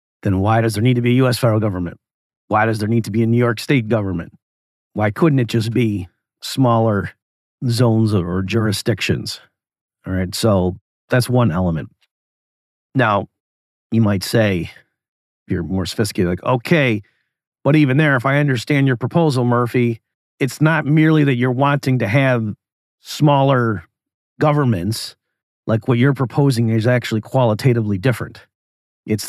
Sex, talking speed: male, 150 wpm